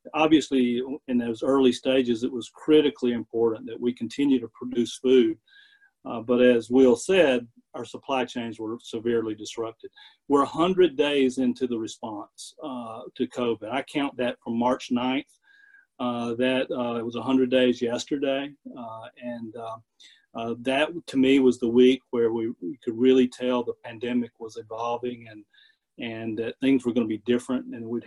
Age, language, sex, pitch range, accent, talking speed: 40-59, English, male, 120-135 Hz, American, 170 wpm